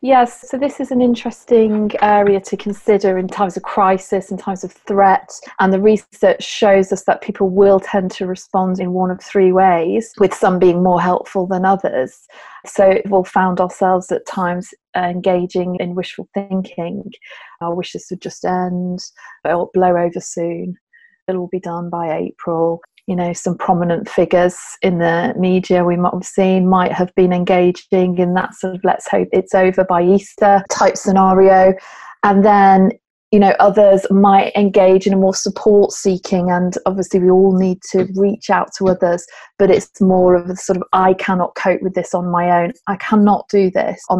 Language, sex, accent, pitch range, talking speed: English, female, British, 180-195 Hz, 185 wpm